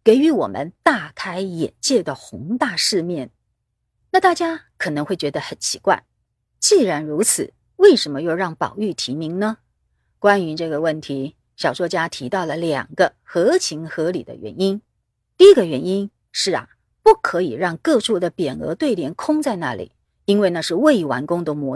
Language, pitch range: Chinese, 160-255 Hz